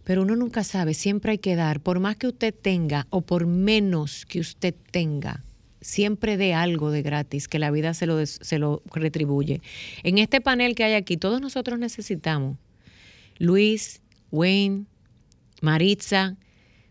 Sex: female